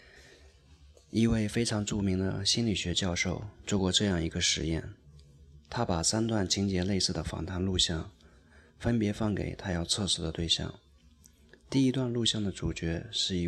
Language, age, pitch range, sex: Chinese, 20-39, 80-100 Hz, male